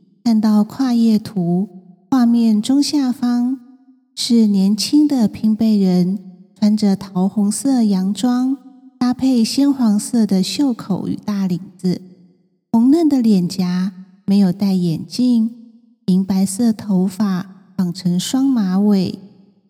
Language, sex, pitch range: Chinese, female, 195-250 Hz